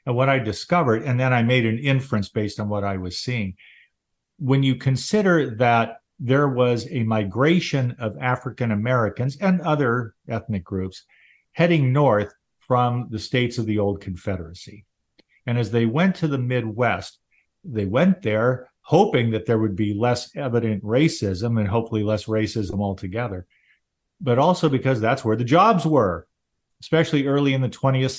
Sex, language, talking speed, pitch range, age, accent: male, English, 160 wpm, 110-135 Hz, 50-69, American